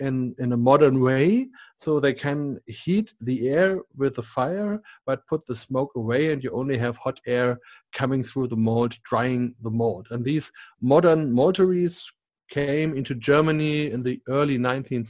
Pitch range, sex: 125-150 Hz, male